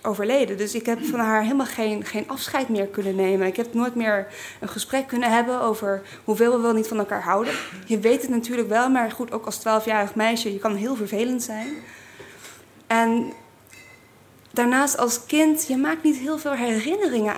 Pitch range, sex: 215-275 Hz, female